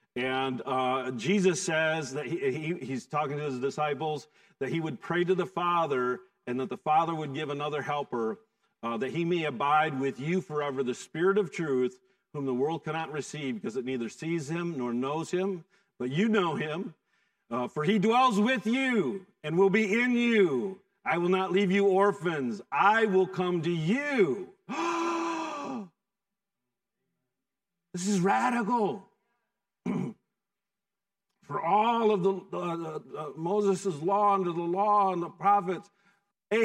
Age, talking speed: 50-69, 160 wpm